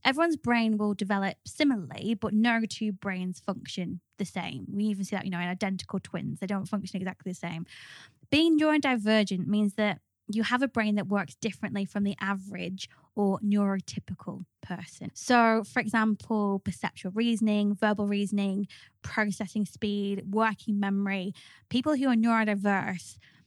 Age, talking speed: 20-39, 150 wpm